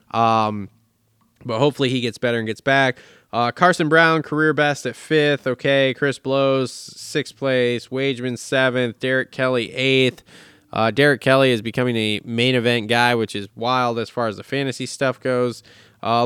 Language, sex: English, male